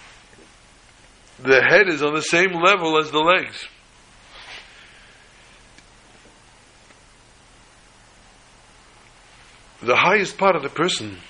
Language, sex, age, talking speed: English, male, 60-79, 85 wpm